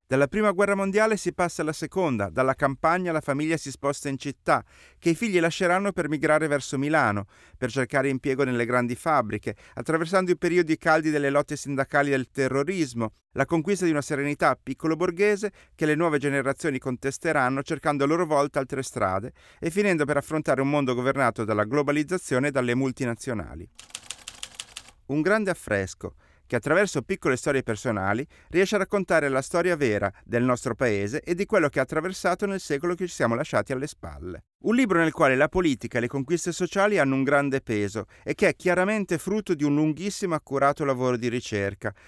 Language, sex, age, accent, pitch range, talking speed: Italian, male, 30-49, native, 125-170 Hz, 180 wpm